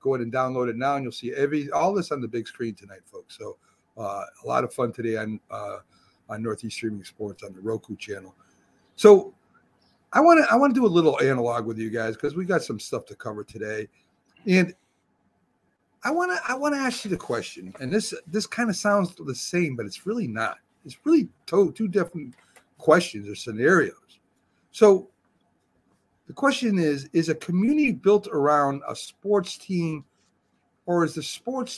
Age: 50-69